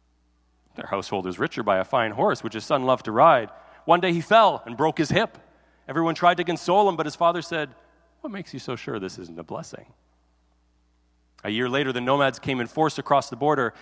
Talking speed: 220 wpm